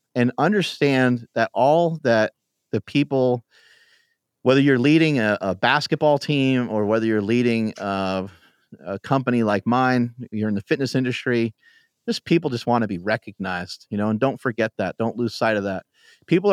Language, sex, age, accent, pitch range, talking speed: English, male, 30-49, American, 105-135 Hz, 170 wpm